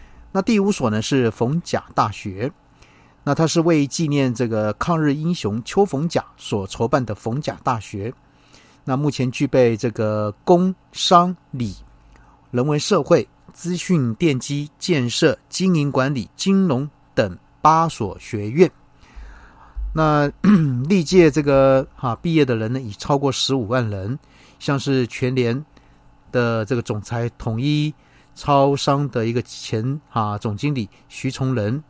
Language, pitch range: Chinese, 115-150 Hz